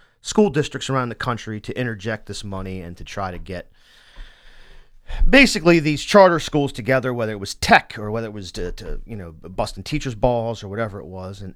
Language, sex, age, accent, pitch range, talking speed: English, male, 40-59, American, 100-140 Hz, 200 wpm